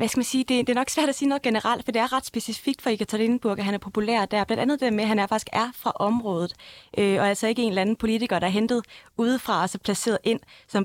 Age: 20-39